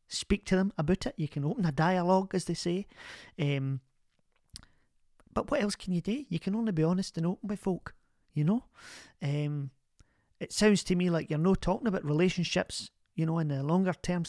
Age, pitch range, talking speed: 40-59, 145-185 Hz, 200 wpm